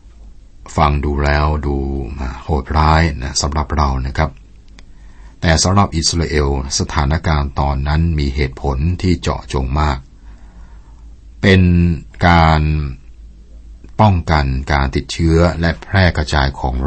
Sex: male